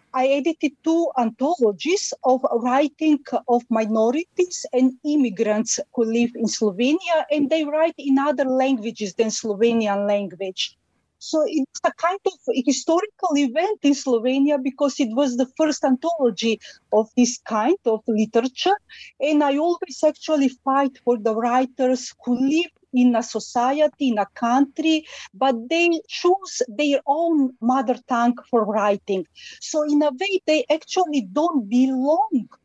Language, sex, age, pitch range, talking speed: English, female, 40-59, 235-300 Hz, 140 wpm